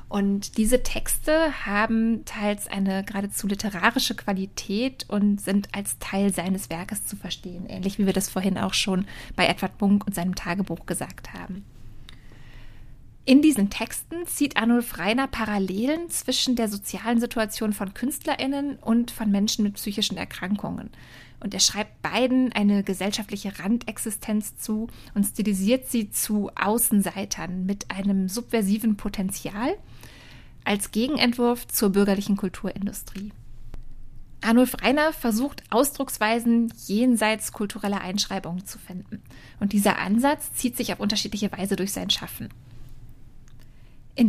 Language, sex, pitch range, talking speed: German, female, 195-230 Hz, 125 wpm